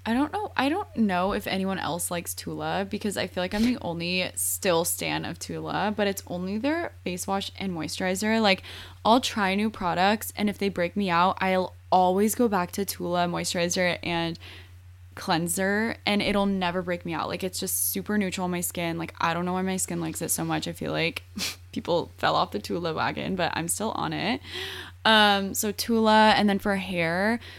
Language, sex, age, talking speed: English, female, 10-29, 210 wpm